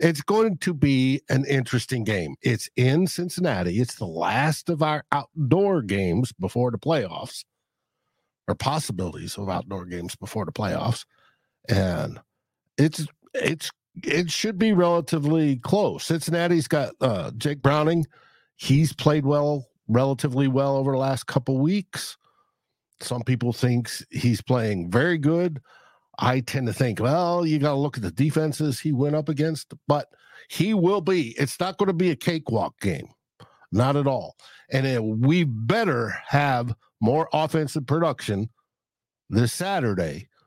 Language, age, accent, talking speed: English, 60-79, American, 145 wpm